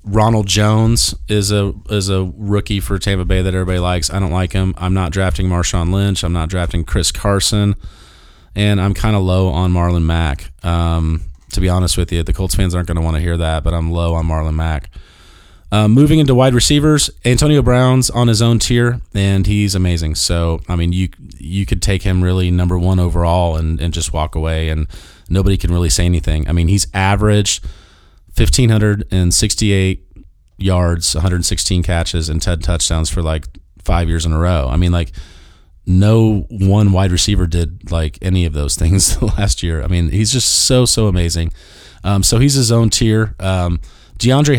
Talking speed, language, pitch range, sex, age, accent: 190 wpm, English, 85-105 Hz, male, 30-49, American